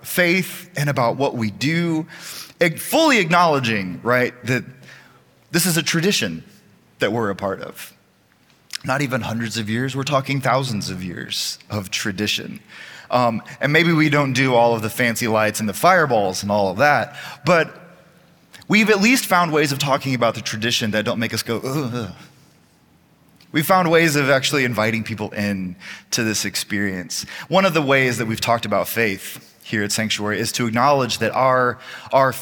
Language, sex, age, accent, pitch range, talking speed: English, male, 20-39, American, 115-155 Hz, 180 wpm